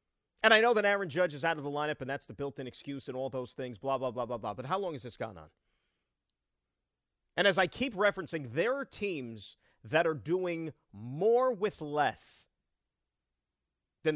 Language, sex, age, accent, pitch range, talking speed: English, male, 40-59, American, 130-210 Hz, 200 wpm